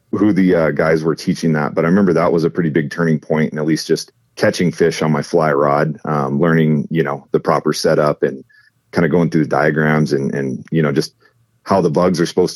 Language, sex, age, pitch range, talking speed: English, male, 40-59, 75-90 Hz, 245 wpm